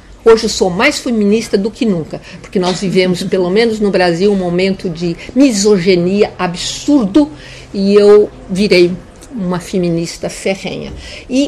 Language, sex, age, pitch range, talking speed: Portuguese, female, 50-69, 180-245 Hz, 140 wpm